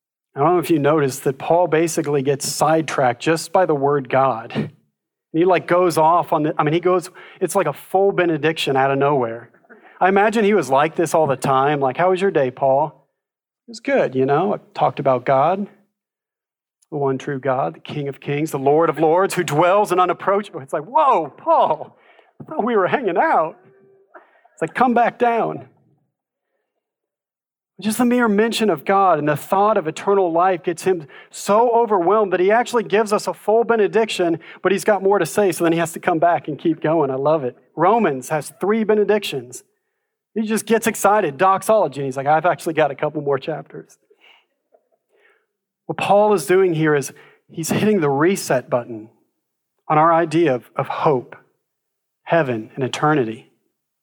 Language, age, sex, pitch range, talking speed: English, 40-59, male, 150-205 Hz, 185 wpm